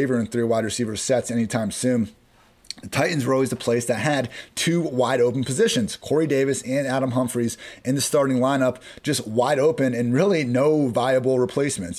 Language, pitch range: English, 115-135 Hz